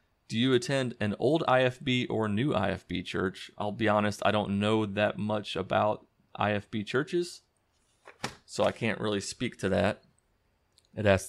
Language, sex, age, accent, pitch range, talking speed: English, male, 30-49, American, 100-130 Hz, 160 wpm